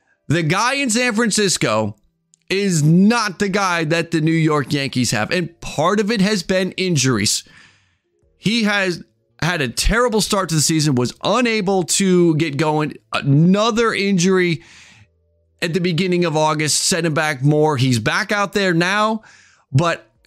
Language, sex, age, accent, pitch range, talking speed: English, male, 30-49, American, 150-200 Hz, 155 wpm